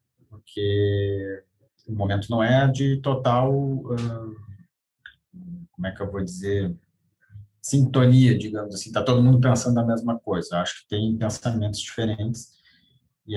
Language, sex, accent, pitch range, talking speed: Portuguese, male, Brazilian, 110-130 Hz, 130 wpm